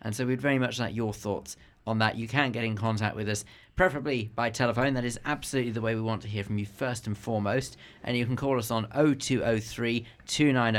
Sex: male